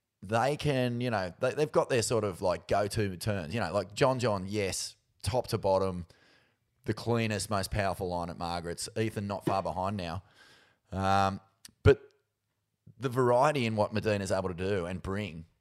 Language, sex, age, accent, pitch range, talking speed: English, male, 20-39, Australian, 95-115 Hz, 175 wpm